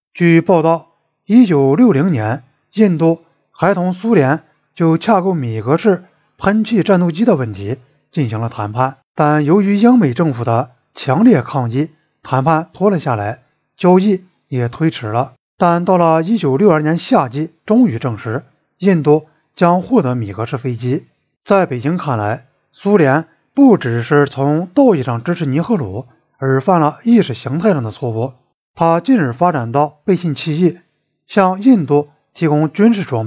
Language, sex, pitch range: Chinese, male, 135-195 Hz